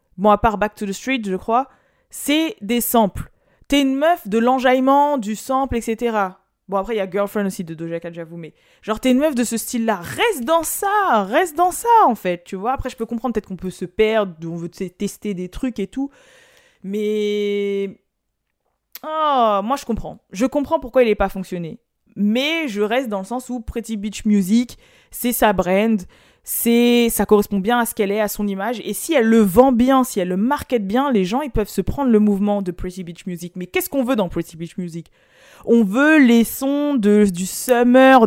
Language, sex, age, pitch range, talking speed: French, female, 20-39, 200-260 Hz, 220 wpm